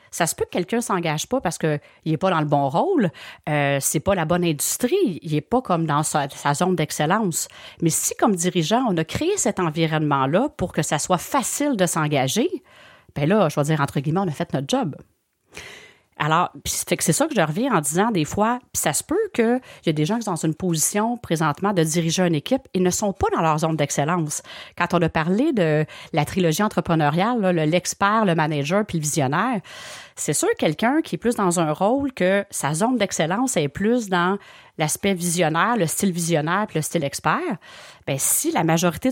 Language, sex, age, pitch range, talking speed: French, female, 40-59, 160-215 Hz, 215 wpm